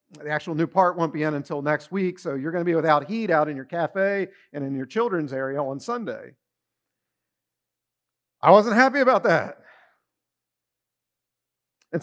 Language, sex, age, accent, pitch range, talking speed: English, male, 50-69, American, 155-195 Hz, 170 wpm